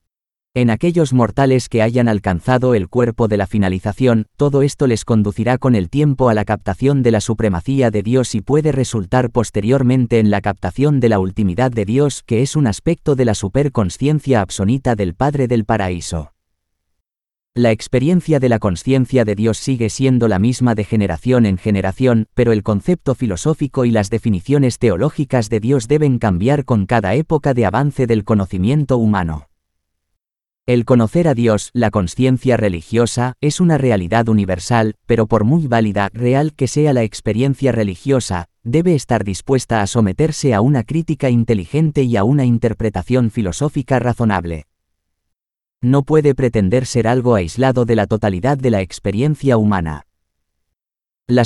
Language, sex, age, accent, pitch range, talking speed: Spanish, male, 30-49, Spanish, 105-130 Hz, 155 wpm